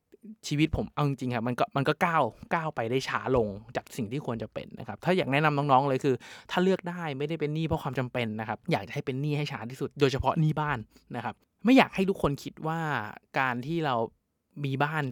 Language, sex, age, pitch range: Thai, male, 20-39, 125-160 Hz